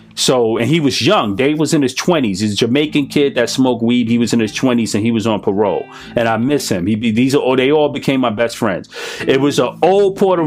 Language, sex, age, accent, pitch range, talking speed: English, male, 30-49, American, 125-160 Hz, 270 wpm